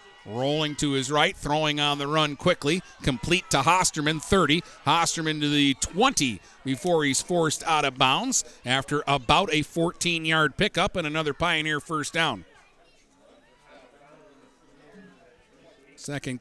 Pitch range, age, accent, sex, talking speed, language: 135-165 Hz, 50-69, American, male, 125 wpm, English